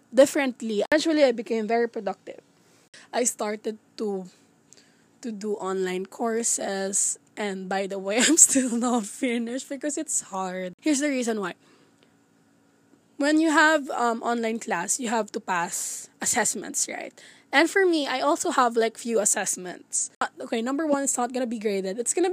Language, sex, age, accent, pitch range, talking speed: Filipino, female, 20-39, native, 210-270 Hz, 160 wpm